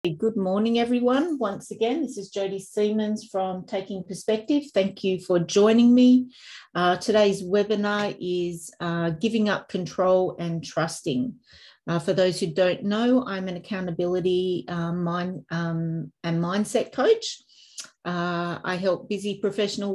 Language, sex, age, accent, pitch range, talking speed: English, female, 40-59, Australian, 175-220 Hz, 140 wpm